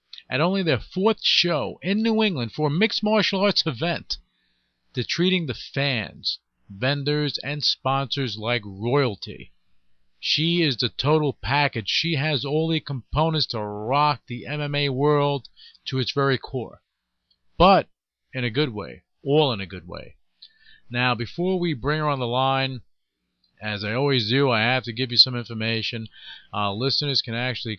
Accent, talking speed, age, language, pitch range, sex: American, 160 wpm, 40-59, English, 110-145 Hz, male